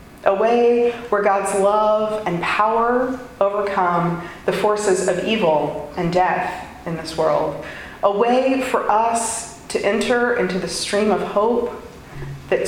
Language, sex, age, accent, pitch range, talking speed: English, female, 30-49, American, 175-230 Hz, 135 wpm